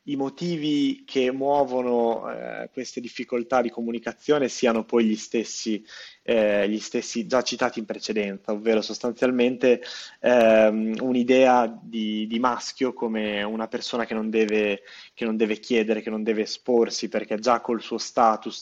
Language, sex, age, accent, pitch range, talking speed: Italian, male, 20-39, native, 110-120 Hz, 140 wpm